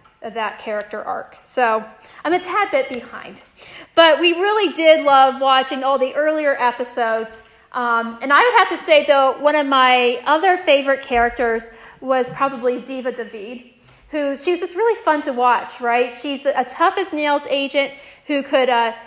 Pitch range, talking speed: 245-305 Hz, 165 wpm